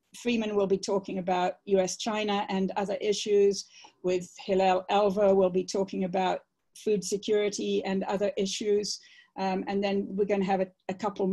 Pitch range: 195-245 Hz